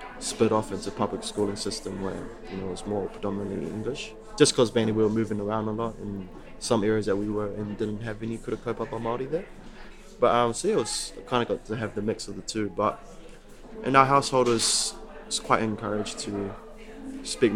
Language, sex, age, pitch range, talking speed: English, male, 20-39, 105-115 Hz, 230 wpm